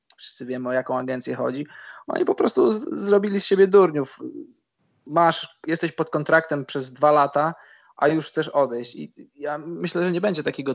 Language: Polish